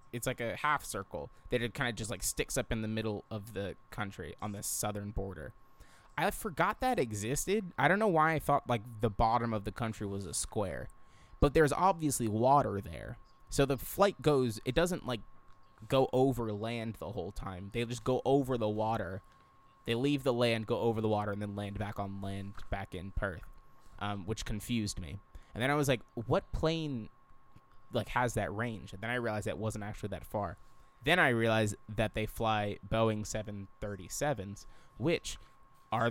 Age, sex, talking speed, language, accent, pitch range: 20-39, male, 195 wpm, English, American, 105-135 Hz